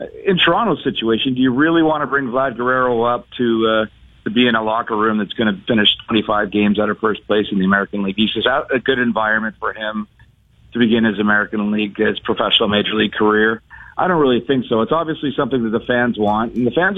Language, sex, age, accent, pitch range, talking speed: English, male, 40-59, American, 110-130 Hz, 235 wpm